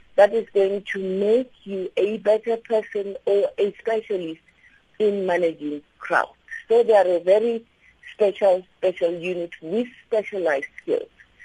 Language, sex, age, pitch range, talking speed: English, female, 50-69, 180-235 Hz, 135 wpm